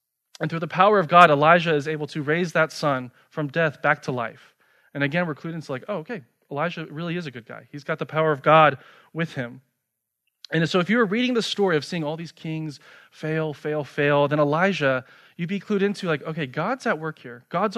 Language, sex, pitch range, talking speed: English, male, 145-190 Hz, 235 wpm